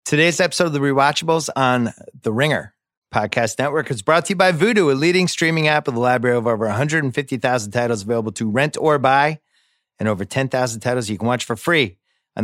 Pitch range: 110-140 Hz